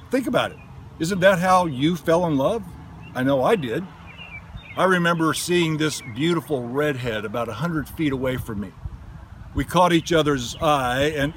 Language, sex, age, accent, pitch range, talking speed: English, male, 50-69, American, 130-180 Hz, 170 wpm